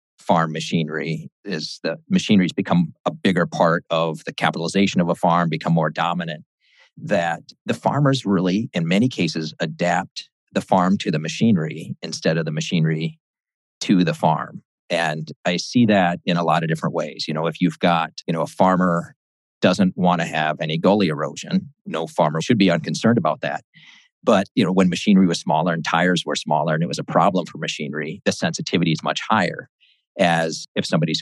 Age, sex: 40-59, male